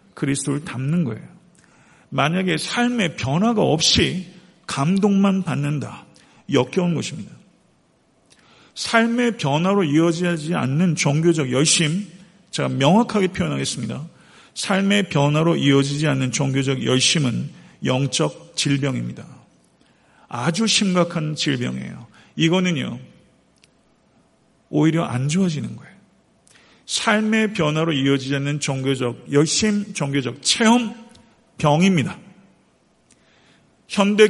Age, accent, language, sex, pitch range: 50-69, native, Korean, male, 140-185 Hz